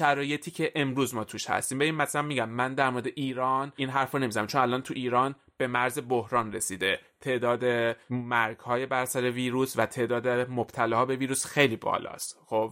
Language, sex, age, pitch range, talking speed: Persian, male, 30-49, 120-145 Hz, 180 wpm